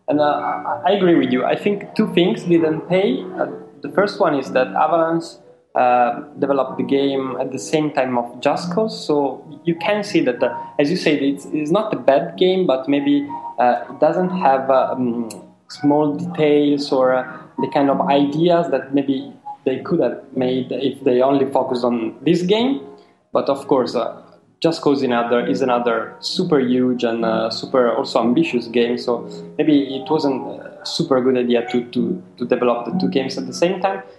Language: English